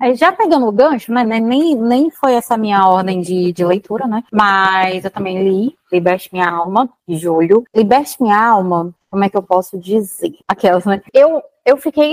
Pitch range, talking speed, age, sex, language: 190-255 Hz, 190 wpm, 20-39, female, Portuguese